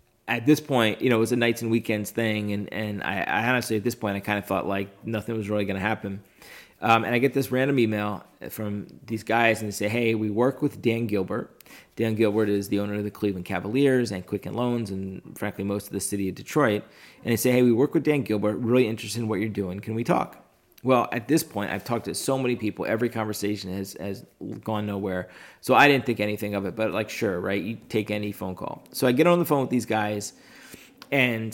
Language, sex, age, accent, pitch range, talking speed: English, male, 30-49, American, 100-120 Hz, 245 wpm